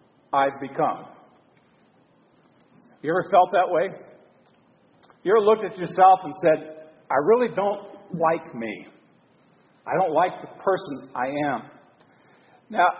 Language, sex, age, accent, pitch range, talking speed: English, male, 50-69, American, 155-210 Hz, 125 wpm